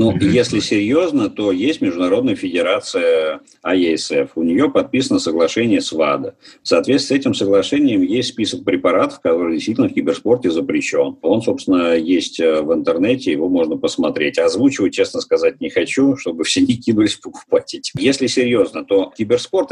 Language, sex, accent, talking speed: Russian, male, native, 145 wpm